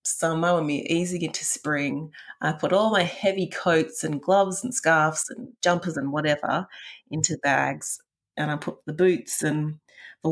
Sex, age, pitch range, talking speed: female, 30-49, 150-190 Hz, 175 wpm